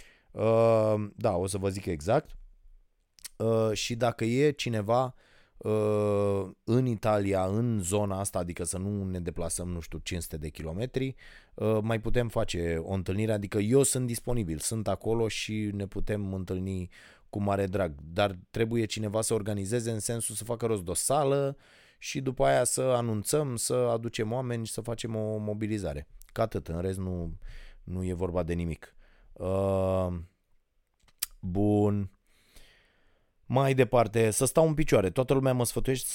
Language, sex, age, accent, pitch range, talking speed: Romanian, male, 20-39, native, 95-115 Hz, 155 wpm